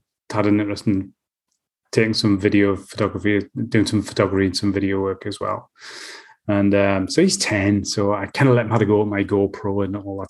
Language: English